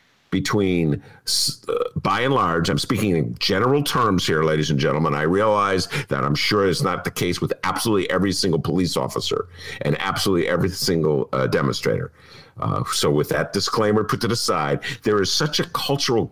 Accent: American